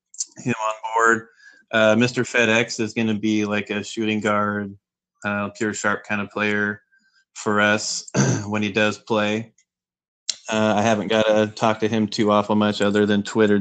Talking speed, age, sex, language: 175 wpm, 20-39, male, English